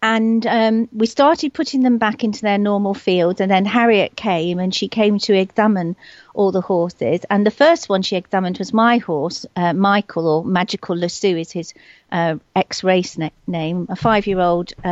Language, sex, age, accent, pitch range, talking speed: English, female, 50-69, British, 180-215 Hz, 175 wpm